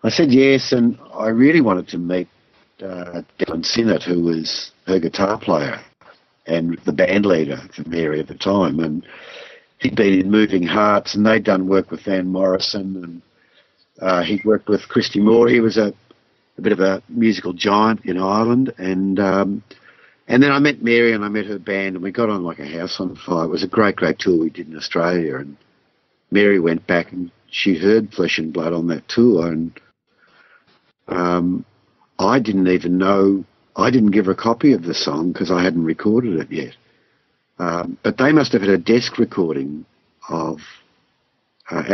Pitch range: 85-110 Hz